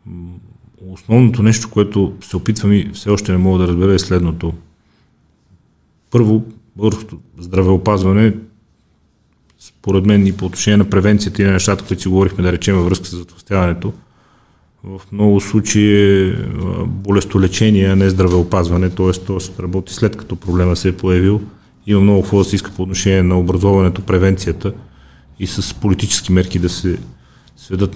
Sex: male